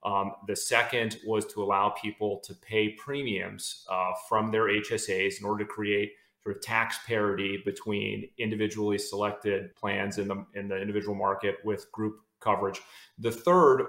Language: English